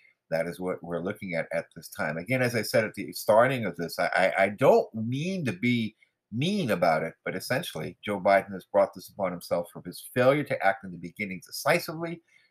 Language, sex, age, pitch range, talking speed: English, male, 50-69, 90-110 Hz, 215 wpm